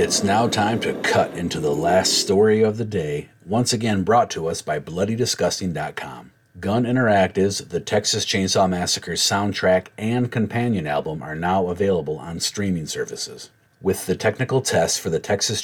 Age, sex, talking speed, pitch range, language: 40-59, male, 160 wpm, 85-110 Hz, English